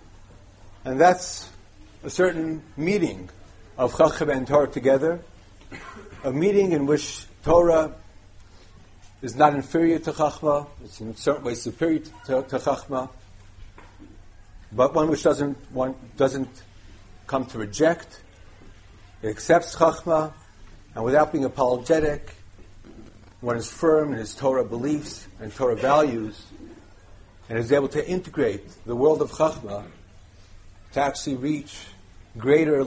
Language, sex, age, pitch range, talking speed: English, male, 50-69, 95-140 Hz, 120 wpm